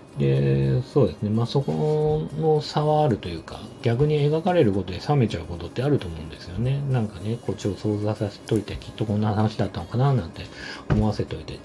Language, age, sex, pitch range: Japanese, 40-59, male, 95-130 Hz